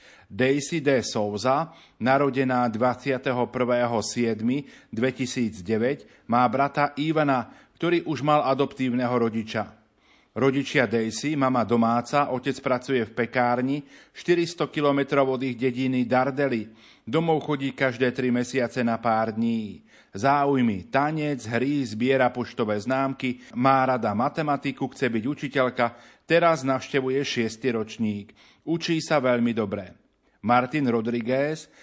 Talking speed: 110 wpm